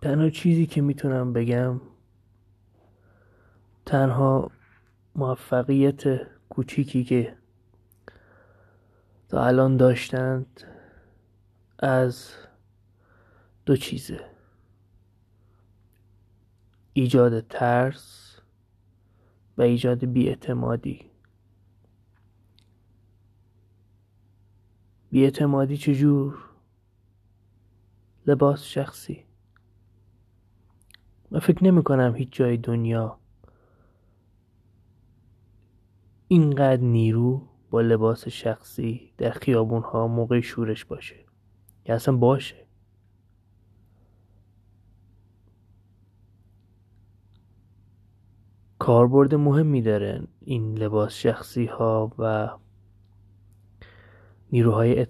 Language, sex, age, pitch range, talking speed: Persian, male, 30-49, 100-120 Hz, 60 wpm